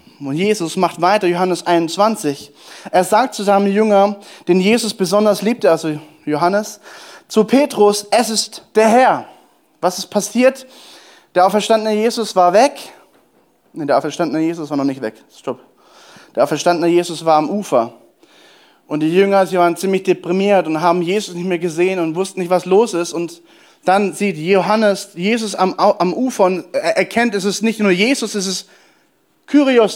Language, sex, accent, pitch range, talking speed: German, male, German, 170-225 Hz, 170 wpm